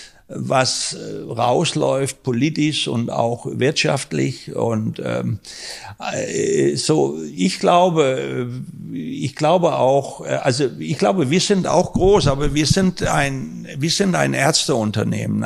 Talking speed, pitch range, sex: 115 wpm, 120-155 Hz, male